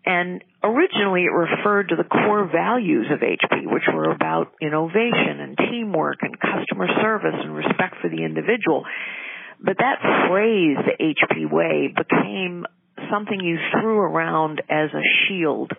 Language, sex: English, female